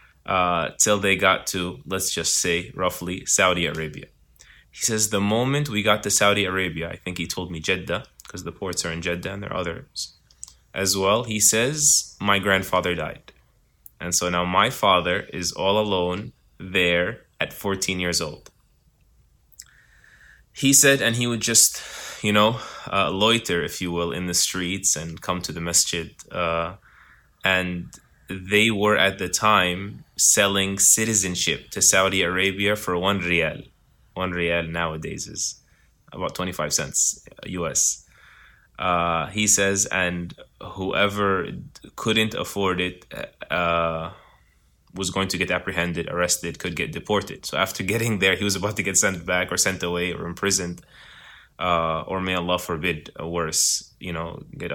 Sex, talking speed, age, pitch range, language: male, 160 wpm, 20-39, 85-100 Hz, English